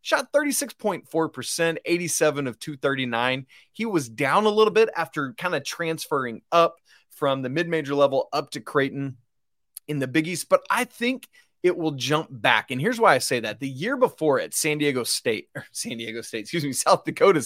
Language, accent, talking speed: English, American, 190 wpm